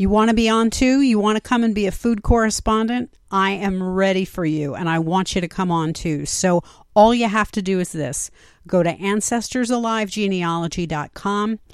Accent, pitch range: American, 170-215 Hz